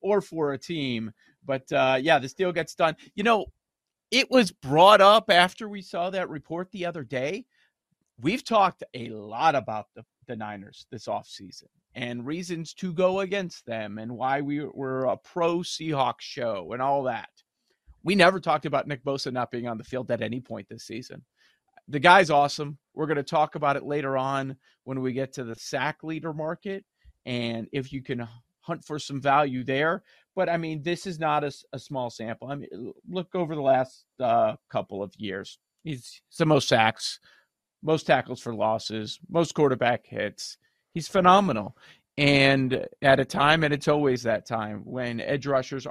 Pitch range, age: 125-165 Hz, 40-59